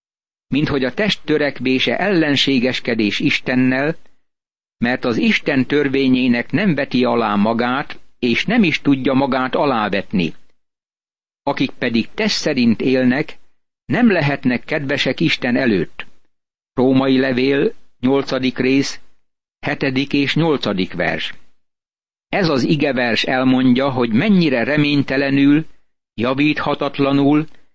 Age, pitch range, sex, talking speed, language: 60-79, 125-150 Hz, male, 100 wpm, Hungarian